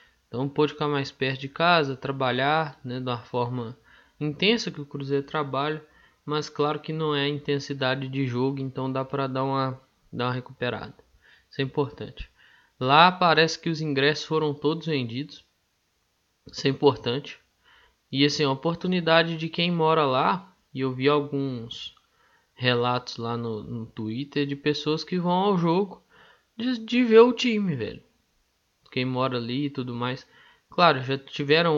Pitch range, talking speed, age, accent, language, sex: 130-155 Hz, 160 wpm, 20-39, Brazilian, Portuguese, male